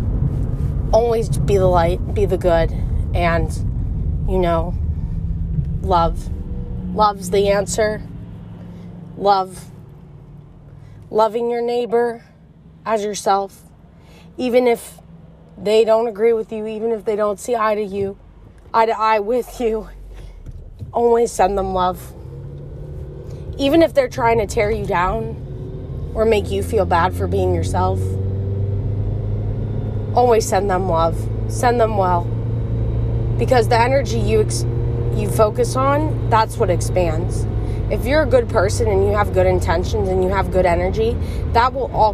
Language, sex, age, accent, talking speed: English, female, 20-39, American, 135 wpm